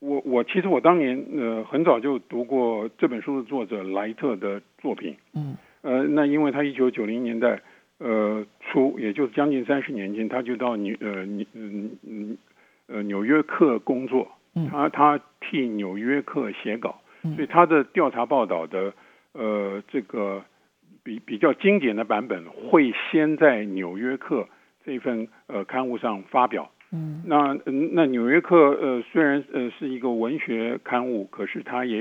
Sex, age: male, 50-69